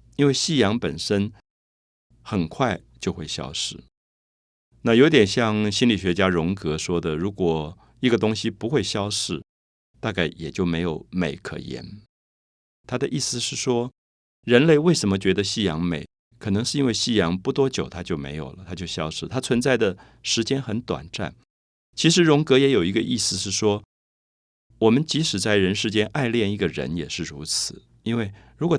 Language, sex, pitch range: Chinese, male, 85-120 Hz